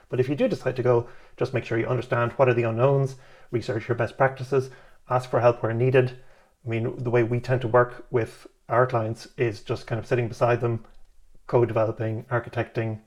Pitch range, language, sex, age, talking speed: 115-130 Hz, English, male, 30-49, 205 wpm